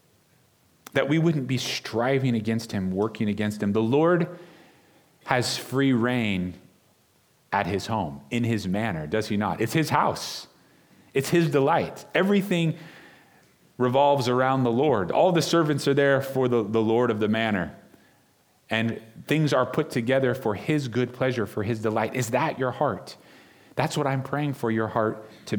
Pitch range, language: 100-135 Hz, English